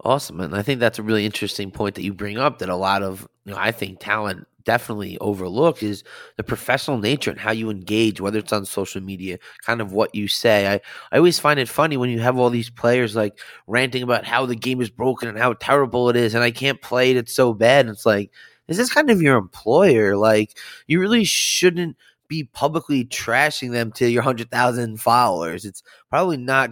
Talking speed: 220 wpm